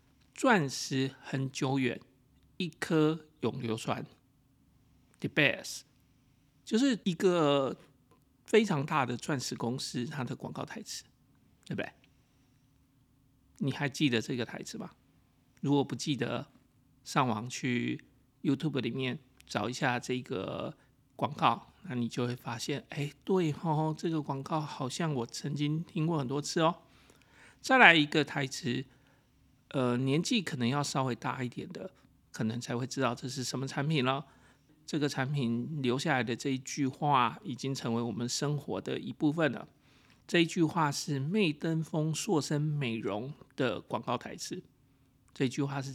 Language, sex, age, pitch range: Chinese, male, 50-69, 130-155 Hz